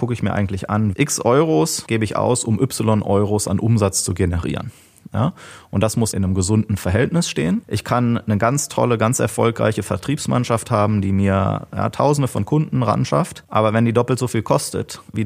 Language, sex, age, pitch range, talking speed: German, male, 30-49, 95-115 Hz, 195 wpm